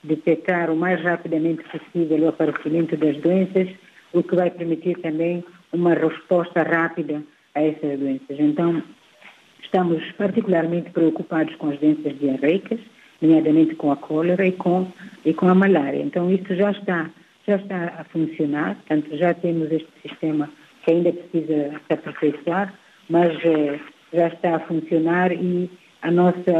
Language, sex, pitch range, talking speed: Portuguese, female, 160-185 Hz, 140 wpm